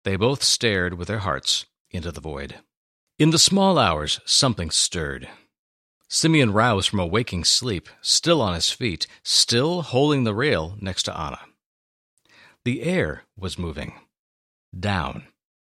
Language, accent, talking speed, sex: English, American, 140 wpm, male